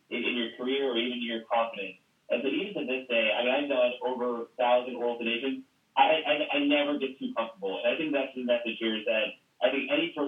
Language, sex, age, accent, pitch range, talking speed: English, male, 30-49, American, 115-160 Hz, 245 wpm